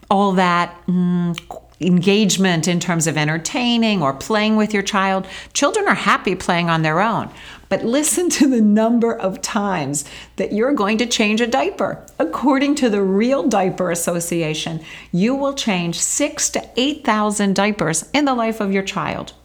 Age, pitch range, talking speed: 50-69, 185-245 Hz, 165 wpm